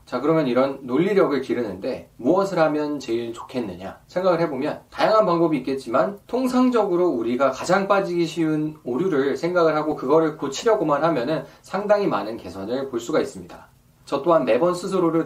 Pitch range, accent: 150-215 Hz, native